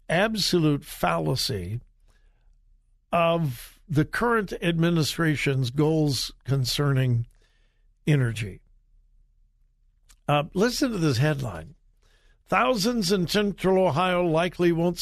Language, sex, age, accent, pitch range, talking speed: English, male, 60-79, American, 130-180 Hz, 80 wpm